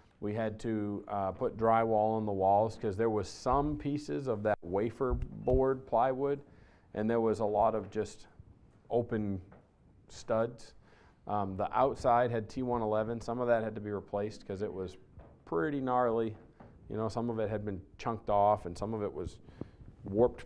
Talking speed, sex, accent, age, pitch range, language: 175 wpm, male, American, 40-59, 105-120 Hz, English